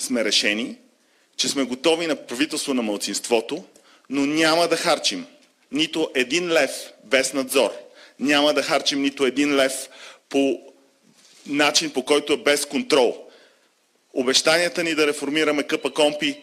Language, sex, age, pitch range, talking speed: Bulgarian, male, 30-49, 185-270 Hz, 135 wpm